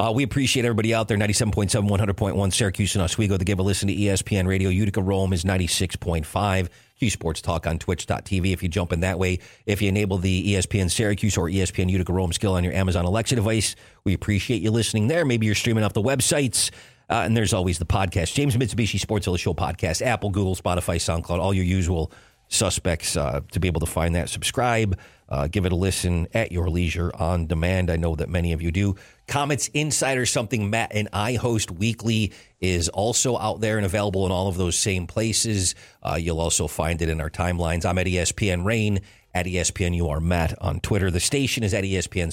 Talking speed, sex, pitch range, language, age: 210 wpm, male, 90-110 Hz, English, 40-59